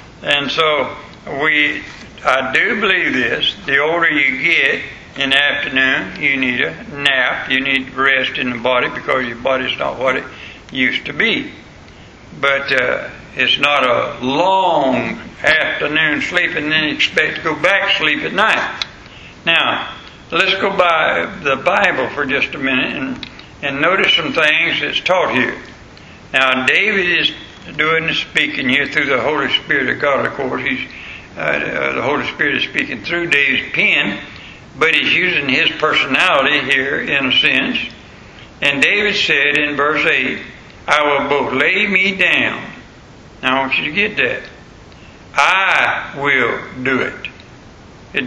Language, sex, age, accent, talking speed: English, male, 60-79, American, 160 wpm